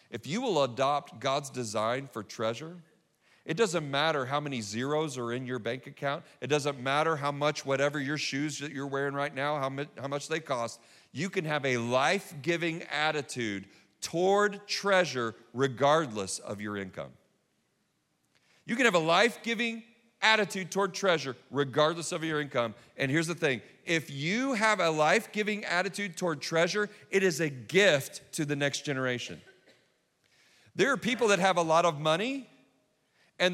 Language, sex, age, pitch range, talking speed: English, male, 40-59, 135-180 Hz, 160 wpm